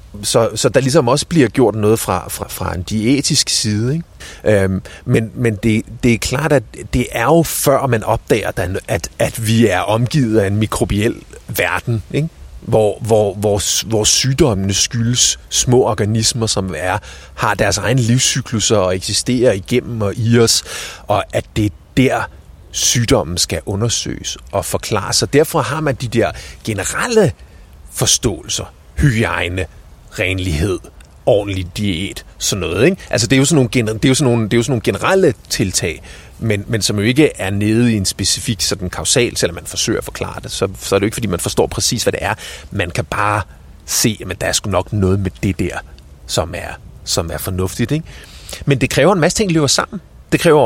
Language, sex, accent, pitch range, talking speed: Danish, male, native, 95-125 Hz, 175 wpm